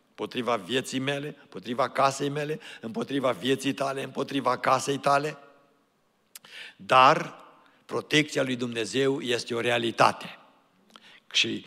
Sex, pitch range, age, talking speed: male, 125-150 Hz, 60-79, 105 wpm